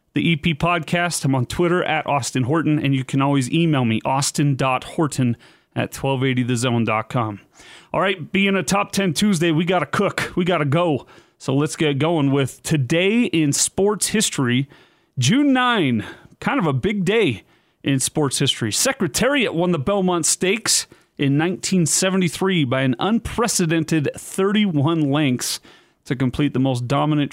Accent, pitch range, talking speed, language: American, 140-180 Hz, 150 wpm, English